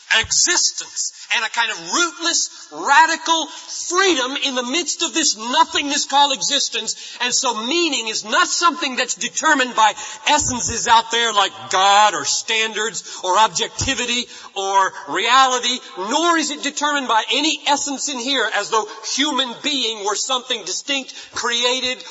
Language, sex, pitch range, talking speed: English, male, 230-315 Hz, 145 wpm